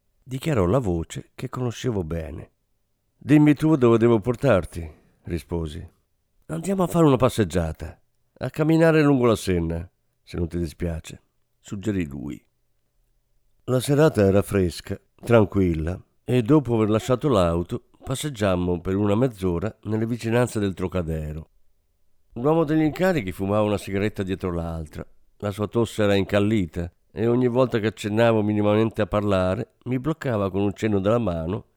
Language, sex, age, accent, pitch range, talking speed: Italian, male, 50-69, native, 90-125 Hz, 140 wpm